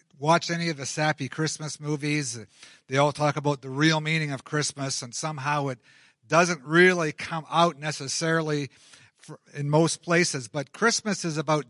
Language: English